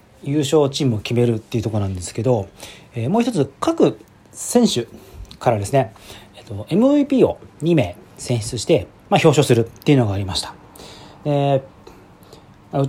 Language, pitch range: Japanese, 105-170 Hz